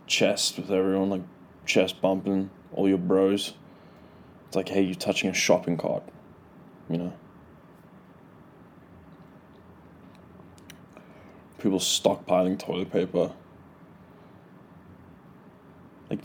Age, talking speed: 20-39, 90 wpm